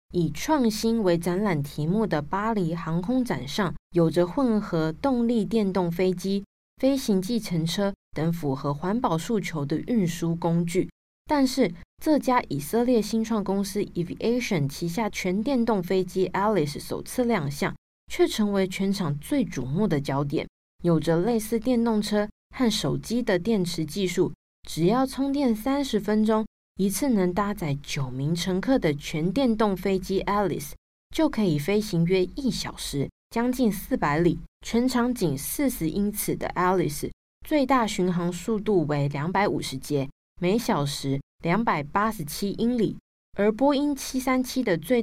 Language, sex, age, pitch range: Chinese, female, 20-39, 170-230 Hz